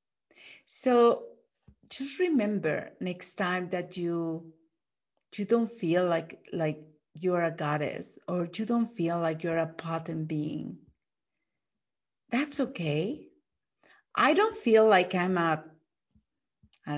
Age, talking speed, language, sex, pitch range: 40-59, 115 wpm, English, female, 170-280 Hz